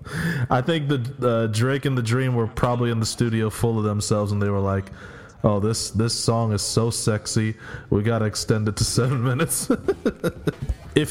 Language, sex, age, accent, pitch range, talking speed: English, male, 20-39, American, 105-125 Hz, 190 wpm